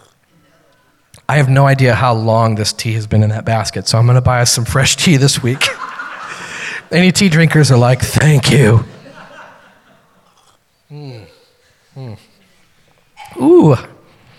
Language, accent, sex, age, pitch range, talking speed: English, American, male, 30-49, 125-205 Hz, 140 wpm